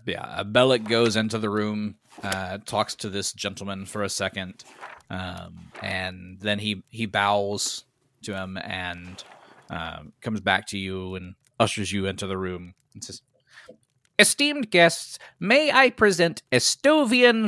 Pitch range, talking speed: 95-130 Hz, 145 wpm